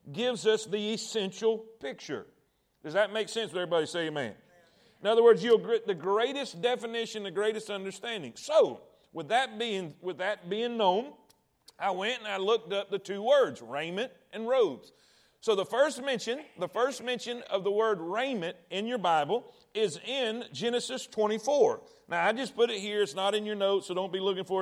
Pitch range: 200-250 Hz